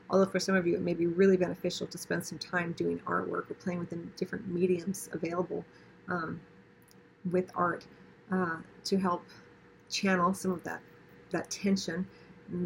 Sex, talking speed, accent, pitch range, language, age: female, 165 wpm, American, 175-190 Hz, English, 40-59